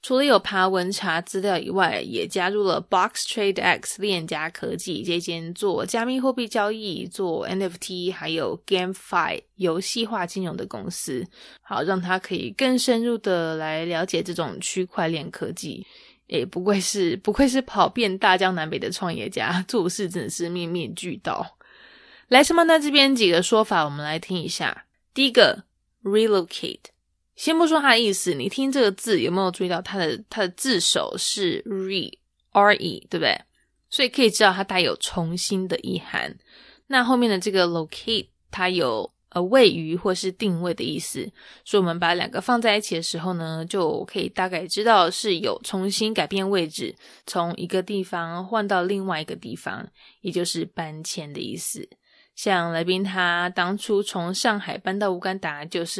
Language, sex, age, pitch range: English, female, 20-39, 175-215 Hz